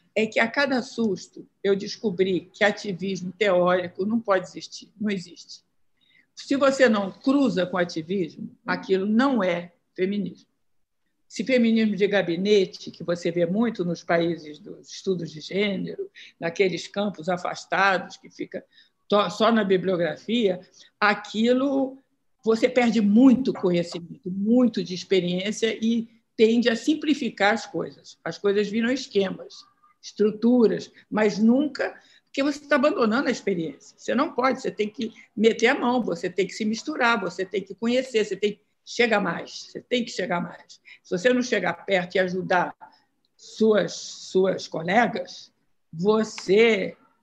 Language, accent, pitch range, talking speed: Portuguese, Brazilian, 190-245 Hz, 145 wpm